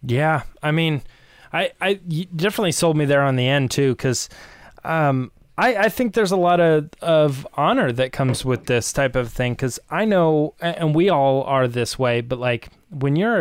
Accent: American